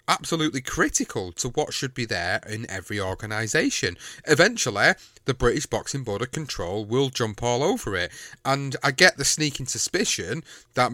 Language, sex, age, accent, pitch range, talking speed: English, male, 30-49, British, 115-135 Hz, 155 wpm